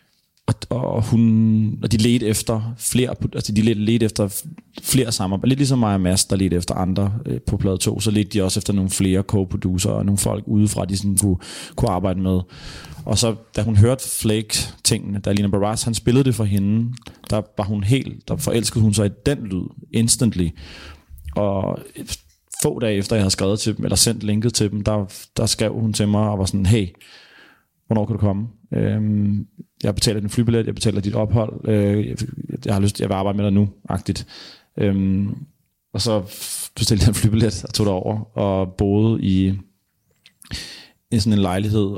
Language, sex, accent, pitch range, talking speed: Danish, male, native, 100-115 Hz, 190 wpm